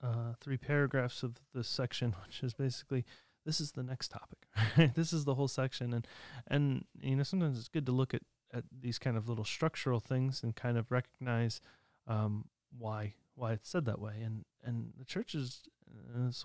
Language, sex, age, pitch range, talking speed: English, male, 30-49, 115-135 Hz, 195 wpm